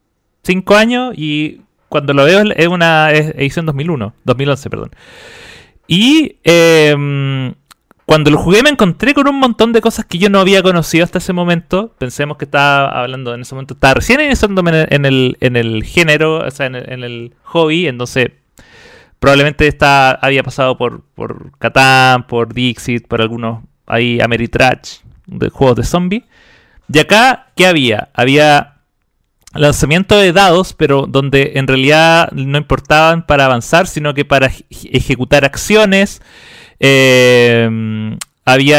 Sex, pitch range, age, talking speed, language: male, 135-170 Hz, 30-49, 145 wpm, Spanish